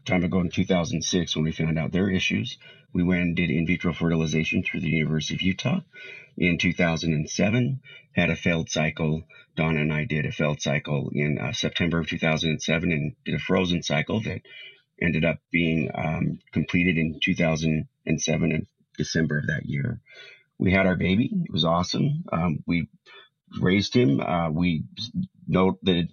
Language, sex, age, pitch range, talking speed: English, male, 30-49, 80-95 Hz, 165 wpm